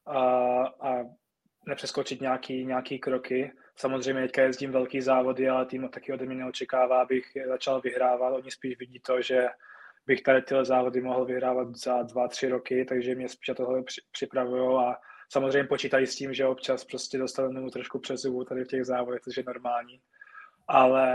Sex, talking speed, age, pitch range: male, 165 wpm, 20-39, 125-135 Hz